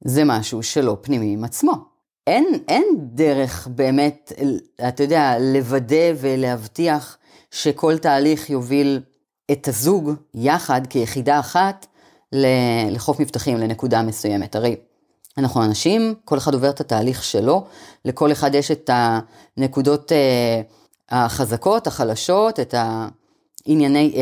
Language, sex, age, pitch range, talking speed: Hebrew, female, 30-49, 125-175 Hz, 110 wpm